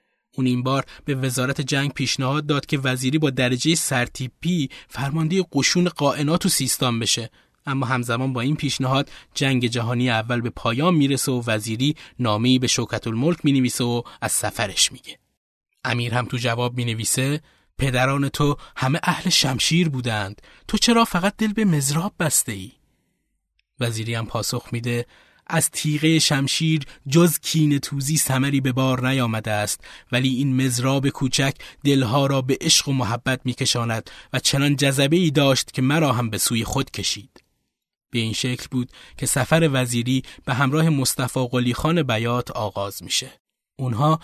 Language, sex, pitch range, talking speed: Persian, male, 125-155 Hz, 155 wpm